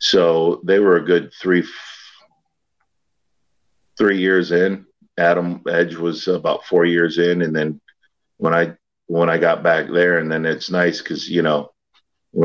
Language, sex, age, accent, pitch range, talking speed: English, male, 50-69, American, 80-95 Hz, 165 wpm